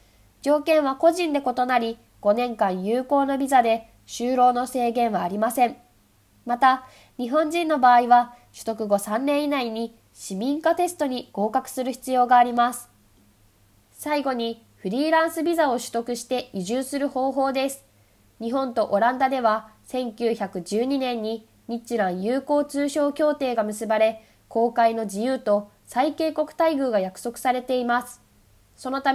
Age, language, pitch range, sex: 20-39, Japanese, 220-275 Hz, female